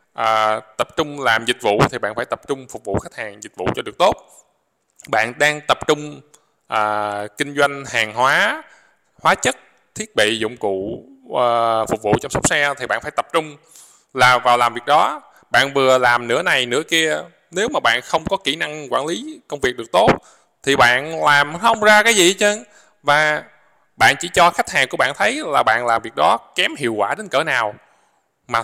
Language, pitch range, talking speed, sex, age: Vietnamese, 125-155 Hz, 200 wpm, male, 20-39